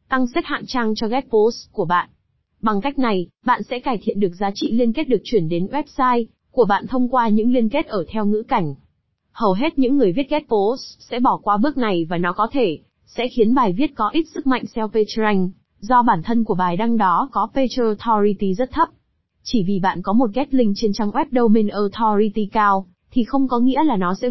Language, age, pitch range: Vietnamese, 20-39, 205-260 Hz